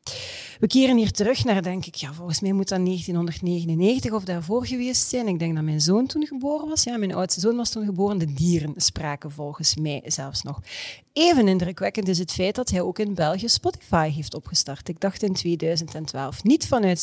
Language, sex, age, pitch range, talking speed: Dutch, female, 40-59, 160-230 Hz, 200 wpm